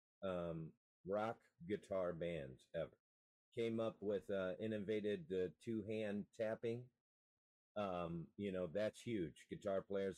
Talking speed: 130 wpm